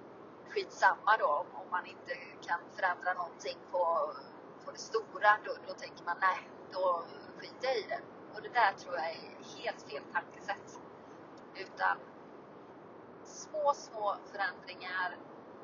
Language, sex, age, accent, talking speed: Swedish, female, 30-49, native, 130 wpm